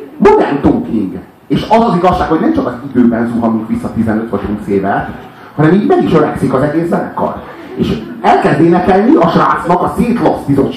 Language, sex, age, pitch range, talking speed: Hungarian, male, 30-49, 120-205 Hz, 165 wpm